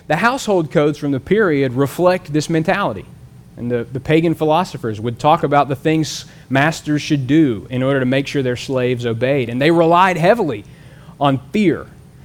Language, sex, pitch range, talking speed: English, male, 130-165 Hz, 175 wpm